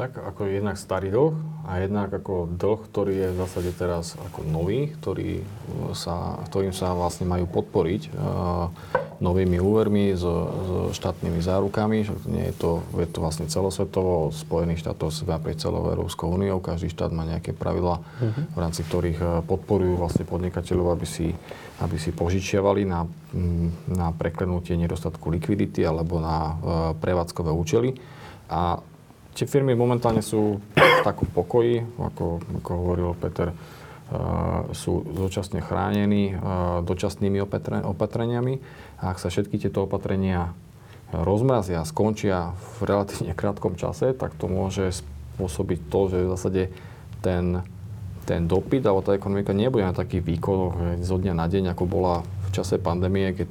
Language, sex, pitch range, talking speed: Slovak, male, 85-100 Hz, 140 wpm